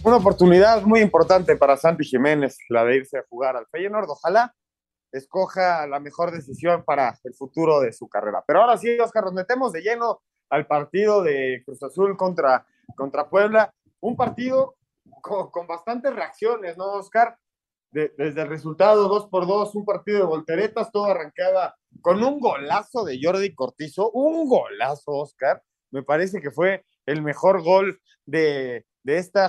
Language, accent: Spanish, Mexican